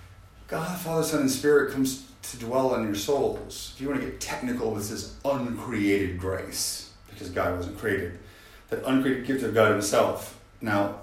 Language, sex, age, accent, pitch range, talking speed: English, male, 40-59, American, 100-125 Hz, 175 wpm